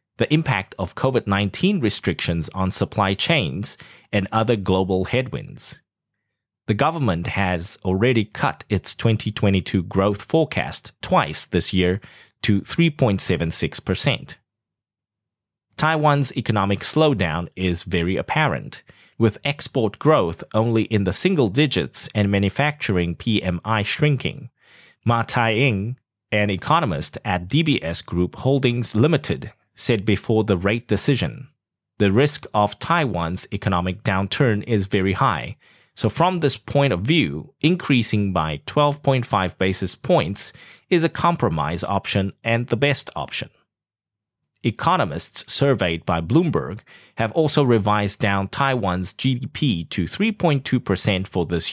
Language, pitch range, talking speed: English, 95-135 Hz, 115 wpm